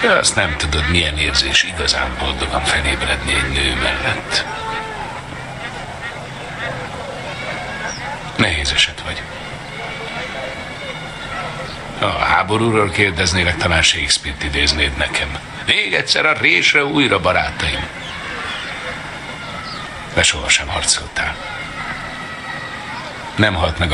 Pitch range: 75-95 Hz